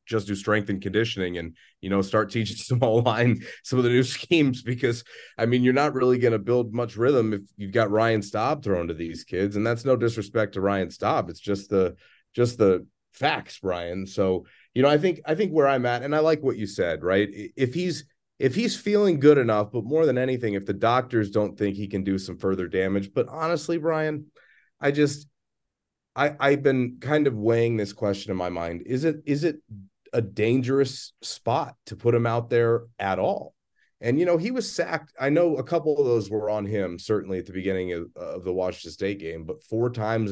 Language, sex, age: English, male, 30-49